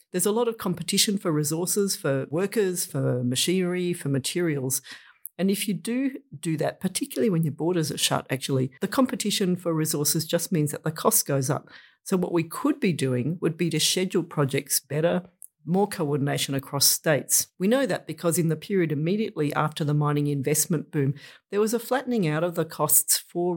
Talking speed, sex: 190 wpm, female